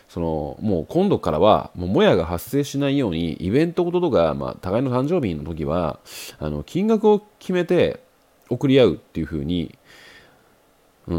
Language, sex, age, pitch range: Japanese, male, 30-49, 80-125 Hz